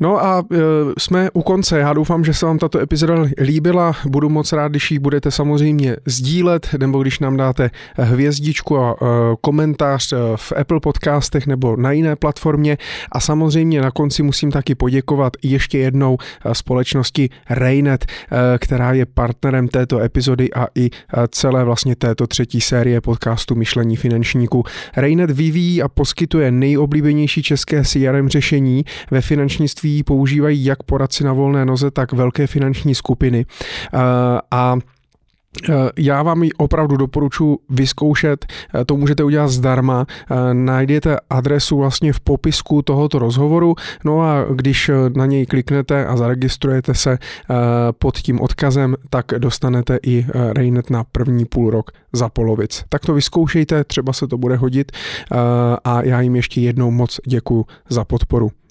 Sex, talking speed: male, 140 wpm